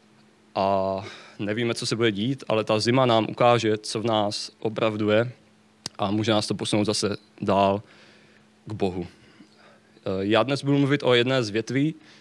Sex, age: male, 20-39